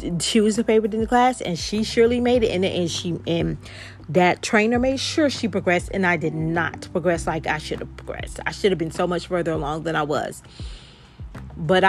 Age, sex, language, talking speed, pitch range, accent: 30-49, female, English, 215 wpm, 160-210 Hz, American